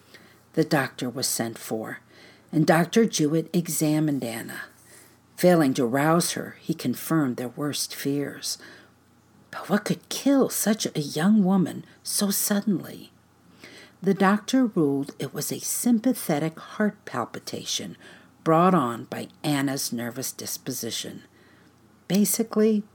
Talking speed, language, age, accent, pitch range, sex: 120 wpm, English, 50-69, American, 120-165 Hz, female